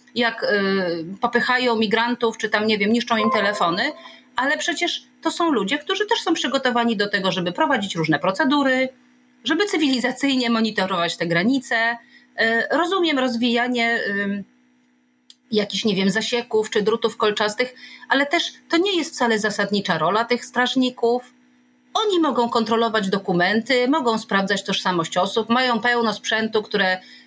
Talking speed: 145 wpm